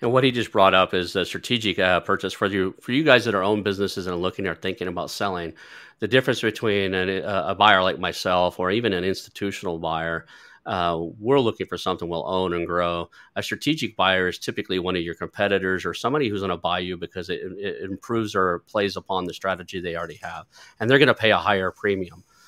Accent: American